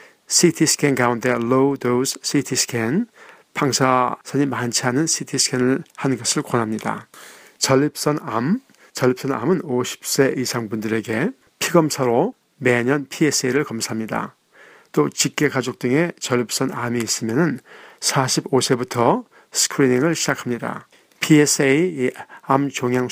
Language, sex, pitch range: Korean, male, 120-145 Hz